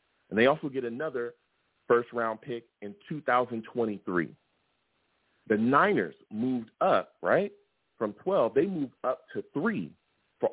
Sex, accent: male, American